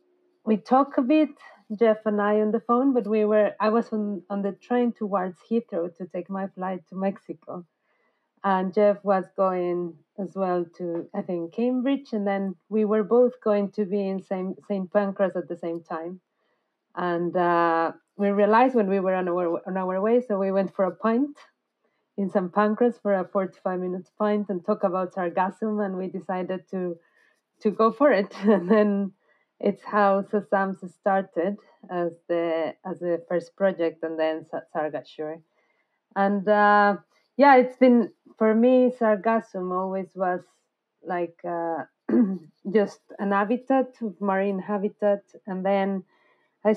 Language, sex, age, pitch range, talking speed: English, female, 30-49, 175-215 Hz, 160 wpm